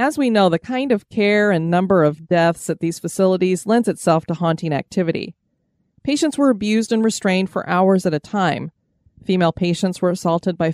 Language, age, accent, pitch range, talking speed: English, 30-49, American, 165-220 Hz, 190 wpm